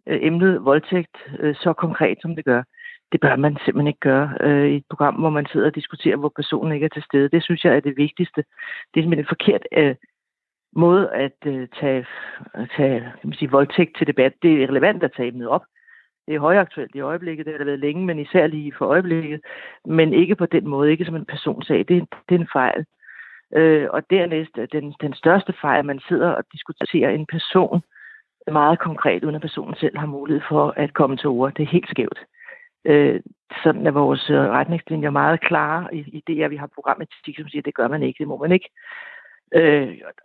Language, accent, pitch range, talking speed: Danish, native, 145-165 Hz, 215 wpm